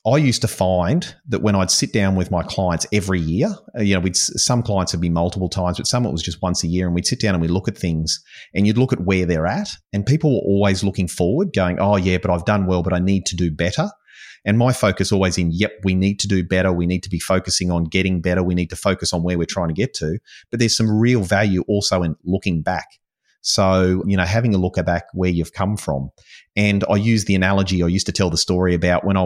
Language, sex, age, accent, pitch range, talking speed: English, male, 30-49, Australian, 85-100 Hz, 265 wpm